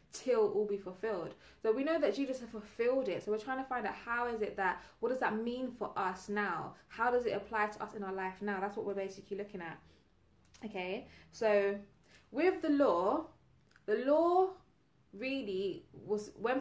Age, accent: 20-39, British